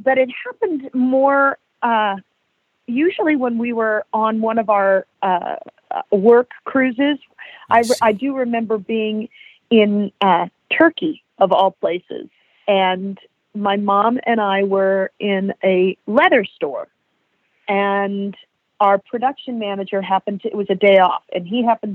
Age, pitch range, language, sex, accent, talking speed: 40-59, 200-265 Hz, English, female, American, 140 wpm